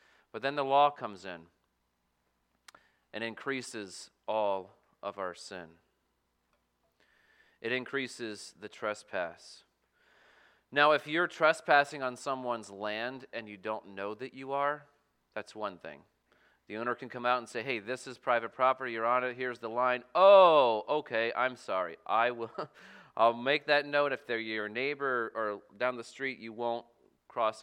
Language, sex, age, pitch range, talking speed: English, male, 30-49, 105-150 Hz, 155 wpm